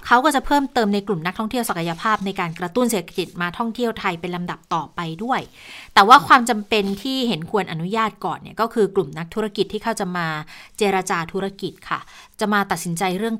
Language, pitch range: Thai, 175-220 Hz